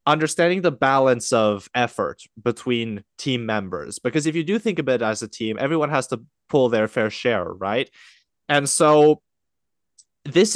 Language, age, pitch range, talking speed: English, 20-39, 115-155 Hz, 160 wpm